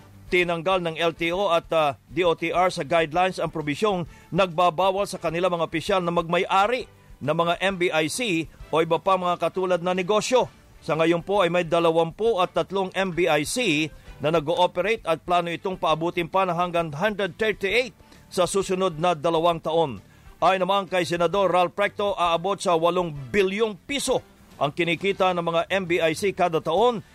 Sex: male